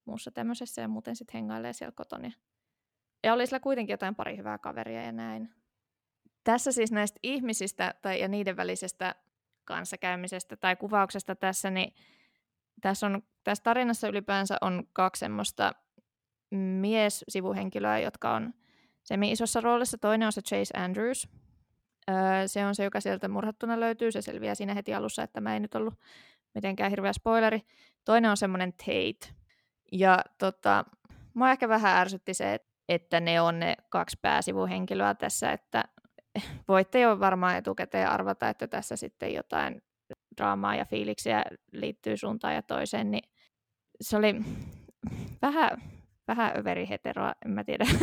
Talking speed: 145 wpm